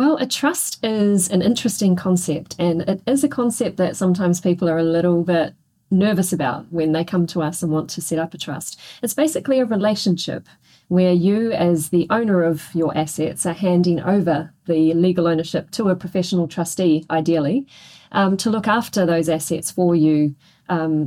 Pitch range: 170-195 Hz